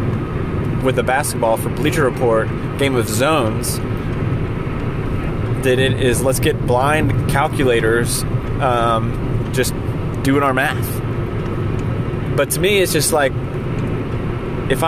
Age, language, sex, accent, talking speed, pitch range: 30-49, English, male, American, 115 wpm, 120-150 Hz